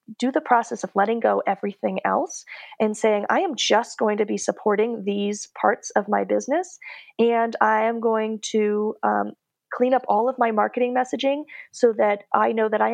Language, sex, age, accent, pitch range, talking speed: English, female, 30-49, American, 200-245 Hz, 190 wpm